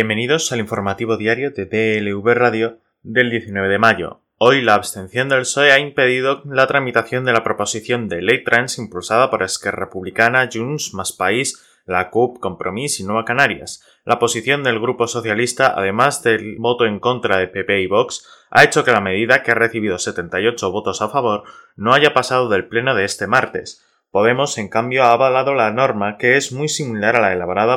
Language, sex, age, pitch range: Spanish, male, 20-39, 105-125 Hz